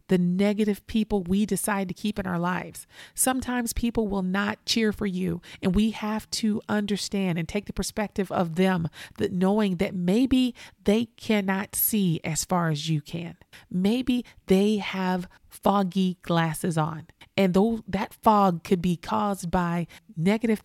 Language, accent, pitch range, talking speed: English, American, 180-215 Hz, 155 wpm